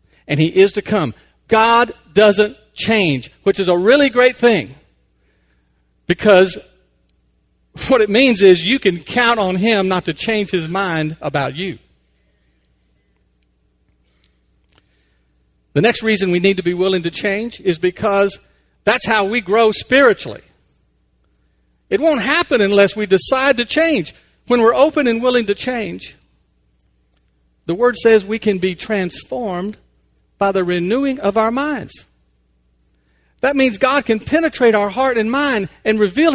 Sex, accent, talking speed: male, American, 145 wpm